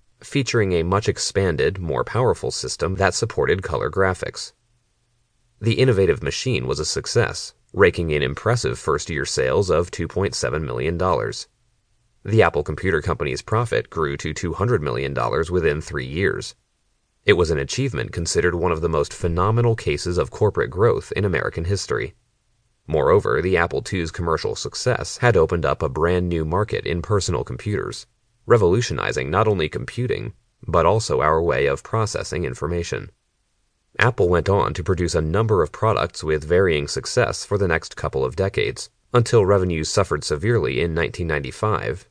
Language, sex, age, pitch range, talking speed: English, male, 30-49, 85-115 Hz, 150 wpm